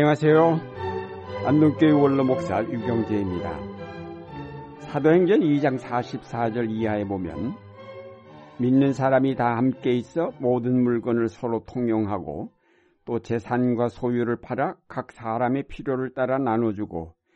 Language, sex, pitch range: Korean, male, 115-145 Hz